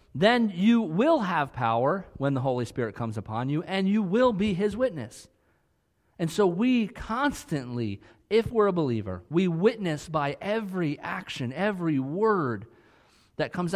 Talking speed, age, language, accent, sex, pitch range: 155 wpm, 40-59, English, American, male, 115-170 Hz